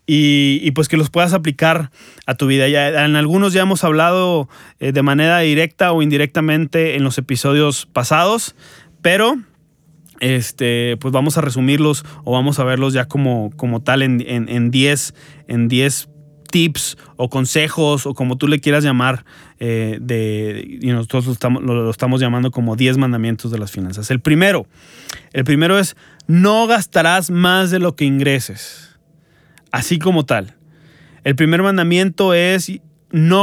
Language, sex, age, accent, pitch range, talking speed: Spanish, male, 30-49, Mexican, 130-165 Hz, 160 wpm